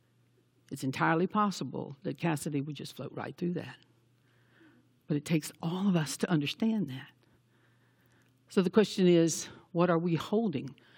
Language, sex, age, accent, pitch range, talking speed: English, female, 60-79, American, 130-175 Hz, 155 wpm